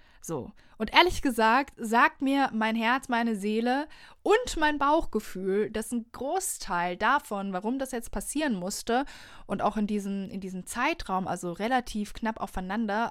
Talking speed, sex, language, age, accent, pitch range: 150 wpm, female, German, 20-39, German, 190-235 Hz